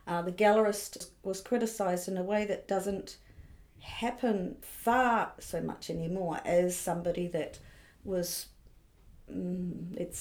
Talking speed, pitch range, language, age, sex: 125 wpm, 170-195 Hz, English, 50-69, female